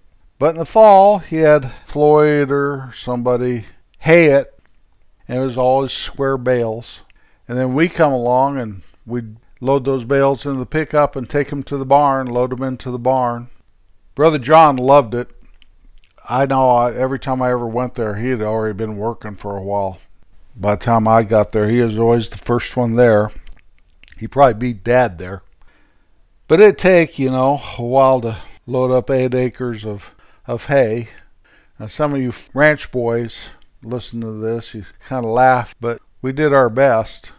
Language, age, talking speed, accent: English, 50-69, 180 wpm, American